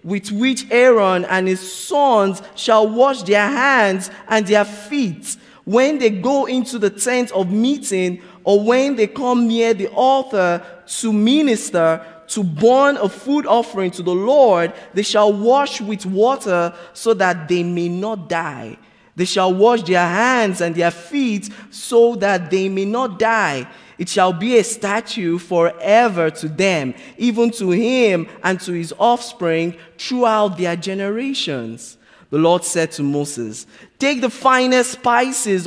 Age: 20-39